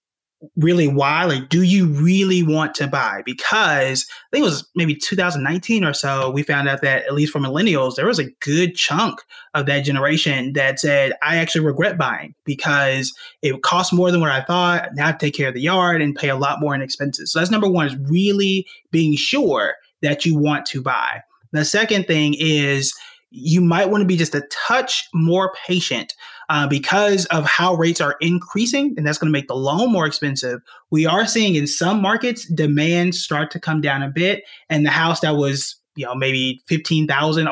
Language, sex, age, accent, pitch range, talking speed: English, male, 30-49, American, 145-175 Hz, 200 wpm